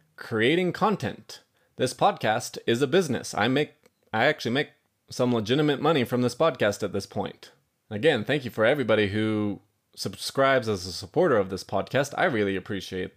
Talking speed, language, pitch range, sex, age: 170 wpm, English, 105-140 Hz, male, 20-39